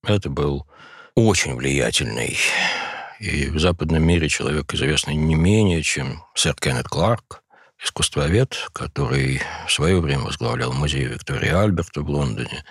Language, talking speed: Russian, 125 wpm